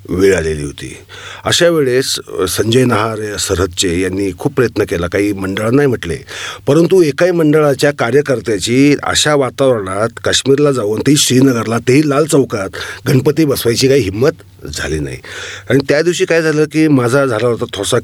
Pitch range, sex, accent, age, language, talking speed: 110-150 Hz, male, native, 40-59, Marathi, 145 wpm